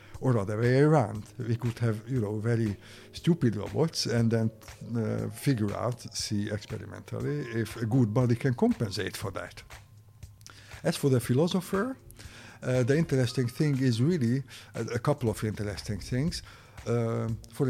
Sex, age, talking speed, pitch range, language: male, 50-69, 150 wpm, 105-130 Hz, English